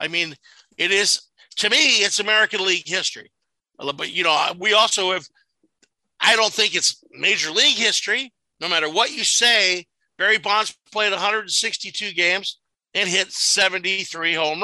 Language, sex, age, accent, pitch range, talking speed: English, male, 60-79, American, 160-215 Hz, 150 wpm